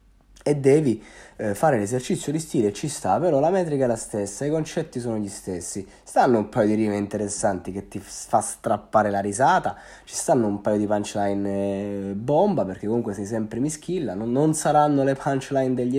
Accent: native